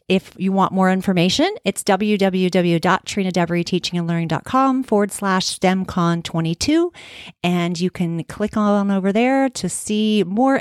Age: 40-59